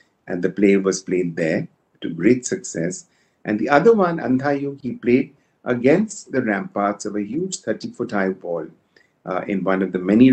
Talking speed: 185 wpm